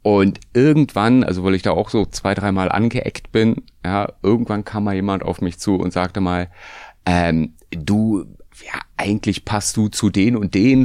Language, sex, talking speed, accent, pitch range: German, male, 185 wpm, German, 90-115 Hz